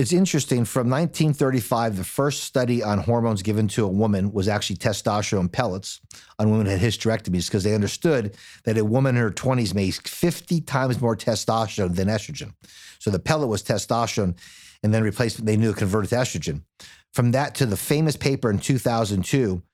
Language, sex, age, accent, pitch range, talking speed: English, male, 50-69, American, 105-130 Hz, 180 wpm